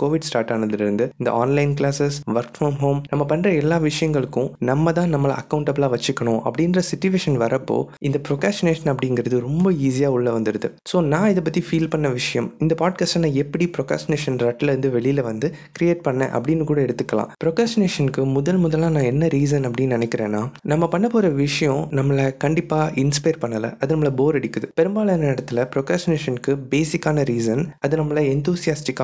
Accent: native